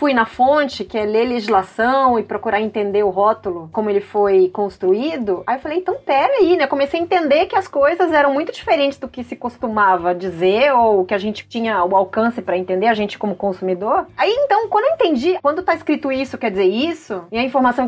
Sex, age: female, 30-49